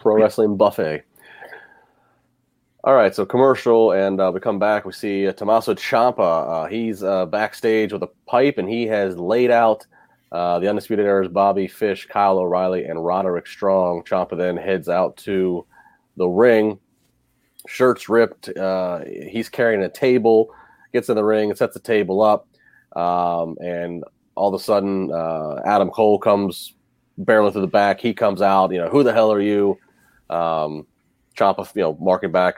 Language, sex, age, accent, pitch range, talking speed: English, male, 30-49, American, 90-110 Hz, 170 wpm